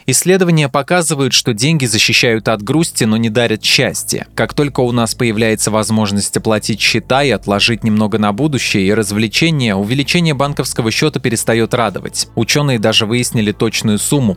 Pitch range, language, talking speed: 110-135 Hz, Russian, 150 wpm